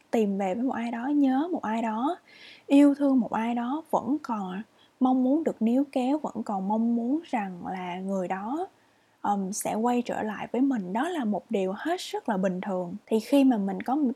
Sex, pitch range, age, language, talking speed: female, 205-275 Hz, 20-39, English, 220 wpm